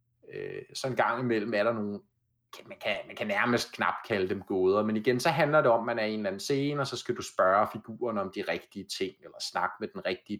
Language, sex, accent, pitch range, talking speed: Danish, male, native, 105-135 Hz, 260 wpm